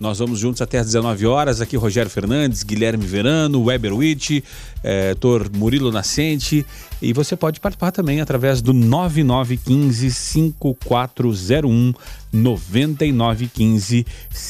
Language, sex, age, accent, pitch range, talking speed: Portuguese, male, 40-59, Brazilian, 115-155 Hz, 110 wpm